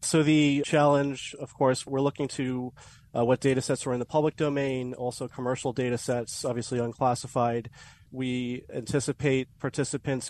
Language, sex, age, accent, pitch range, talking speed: English, male, 30-49, American, 120-135 Hz, 150 wpm